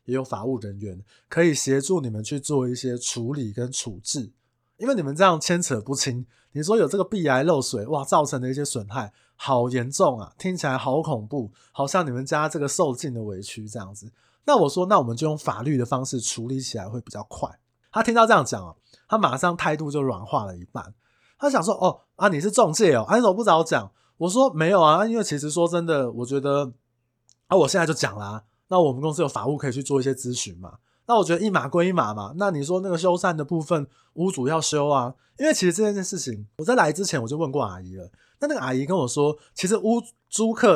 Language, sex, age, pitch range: Chinese, male, 20-39, 120-170 Hz